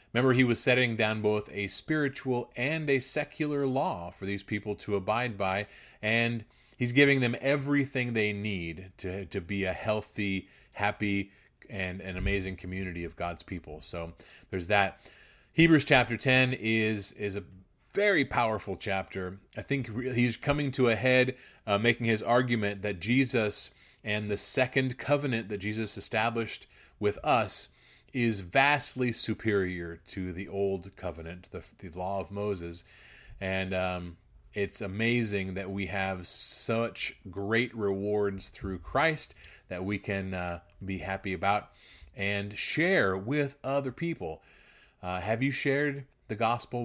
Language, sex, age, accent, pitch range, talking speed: English, male, 30-49, American, 95-120 Hz, 145 wpm